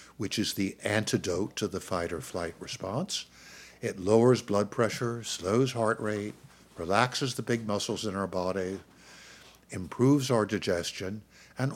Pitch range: 95-135 Hz